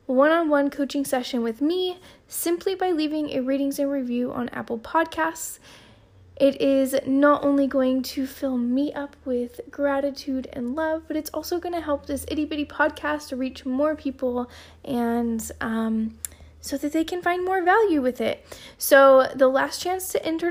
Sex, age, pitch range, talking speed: female, 10-29, 250-305 Hz, 165 wpm